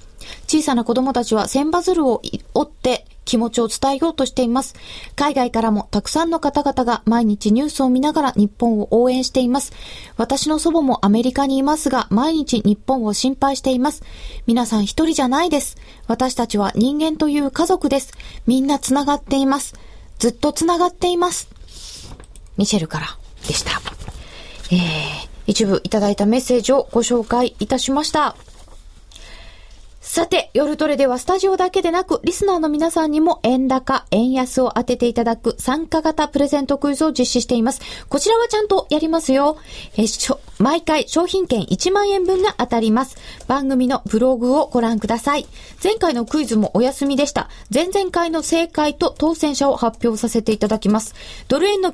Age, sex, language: 20-39, female, Japanese